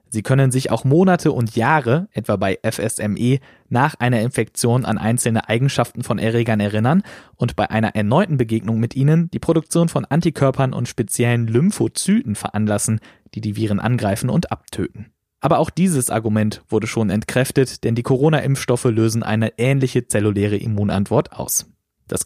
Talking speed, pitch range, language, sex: 155 wpm, 110-135 Hz, German, male